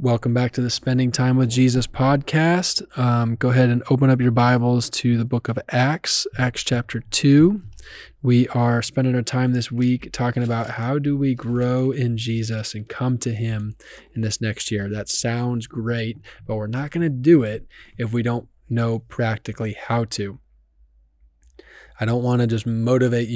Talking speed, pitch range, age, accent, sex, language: 180 wpm, 110-125 Hz, 20-39, American, male, English